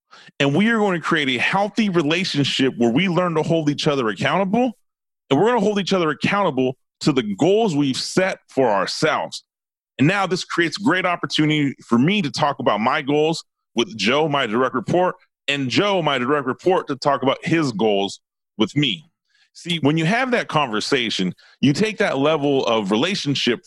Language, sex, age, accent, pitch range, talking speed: English, male, 30-49, American, 140-185 Hz, 190 wpm